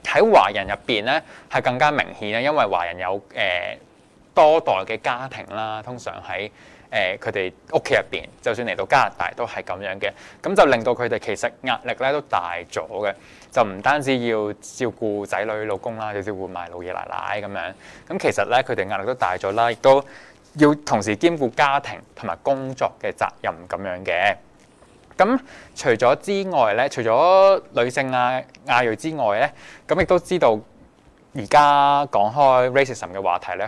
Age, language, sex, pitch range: 20-39, Chinese, male, 105-140 Hz